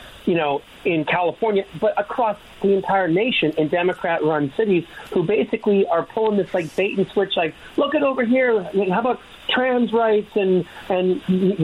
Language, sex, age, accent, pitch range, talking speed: English, male, 40-59, American, 170-220 Hz, 155 wpm